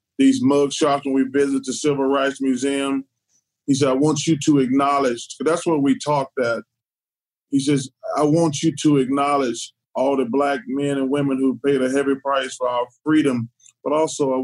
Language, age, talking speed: English, 30-49, 190 wpm